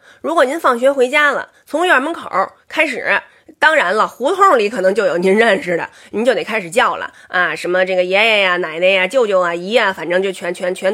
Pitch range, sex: 210-320 Hz, female